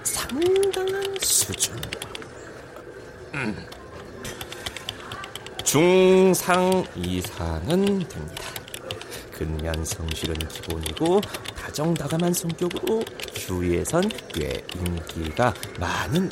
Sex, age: male, 40-59